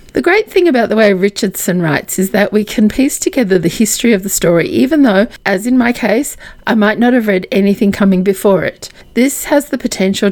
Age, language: 40-59, English